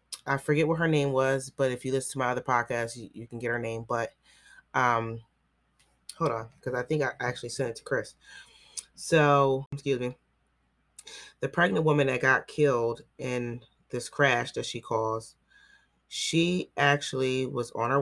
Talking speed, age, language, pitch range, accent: 175 wpm, 30-49, English, 115-140 Hz, American